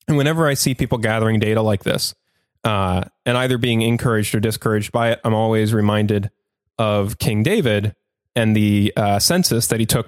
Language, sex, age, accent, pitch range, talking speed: English, male, 20-39, American, 105-130 Hz, 185 wpm